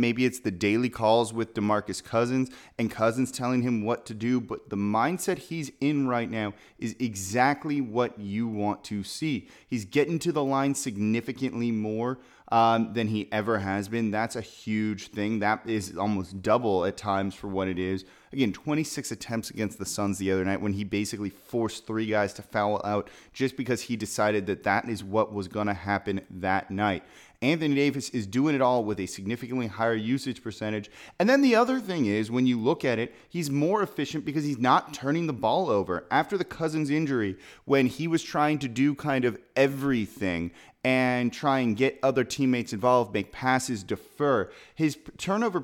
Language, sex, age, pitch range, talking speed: English, male, 20-39, 105-135 Hz, 195 wpm